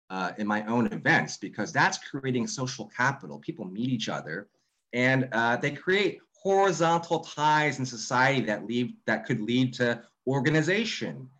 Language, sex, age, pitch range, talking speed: English, male, 30-49, 105-135 Hz, 155 wpm